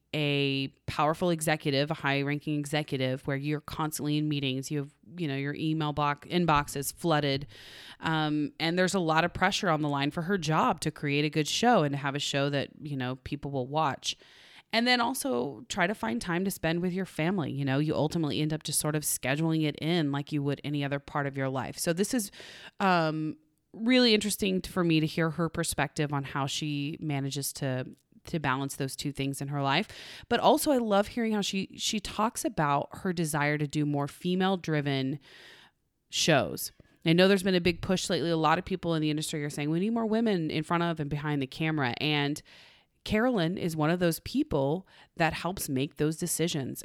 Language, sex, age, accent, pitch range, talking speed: English, female, 30-49, American, 145-175 Hz, 215 wpm